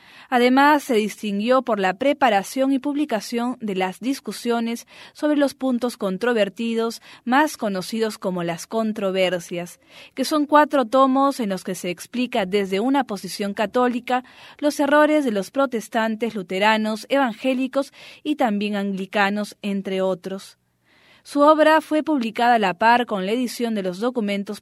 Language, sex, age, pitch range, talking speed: English, female, 20-39, 200-260 Hz, 140 wpm